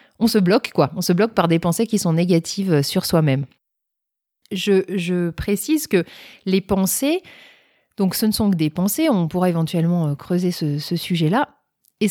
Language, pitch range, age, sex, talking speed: French, 175-220 Hz, 30-49, female, 180 wpm